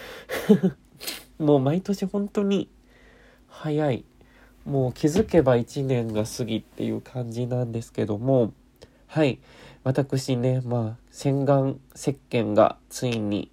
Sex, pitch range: male, 115-145 Hz